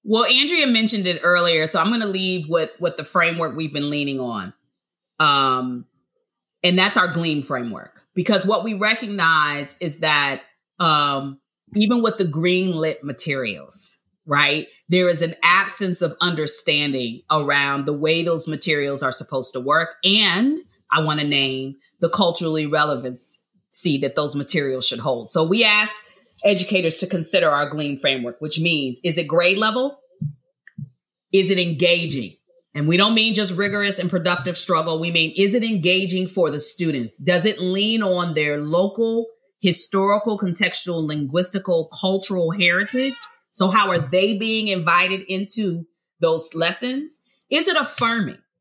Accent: American